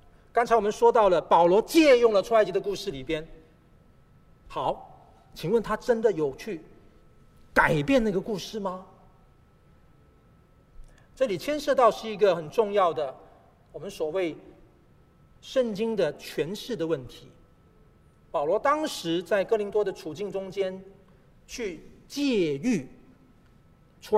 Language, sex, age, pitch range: Chinese, male, 40-59, 180-255 Hz